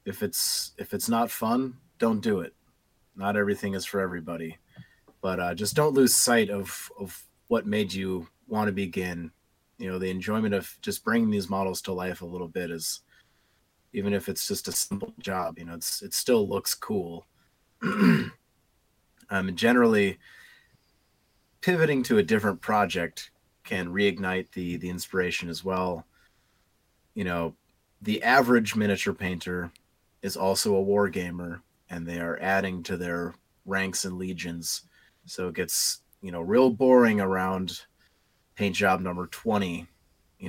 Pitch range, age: 90-105 Hz, 30-49